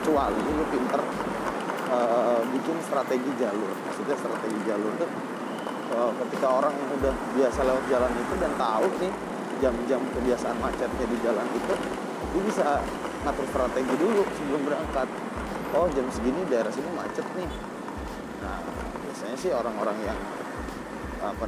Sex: male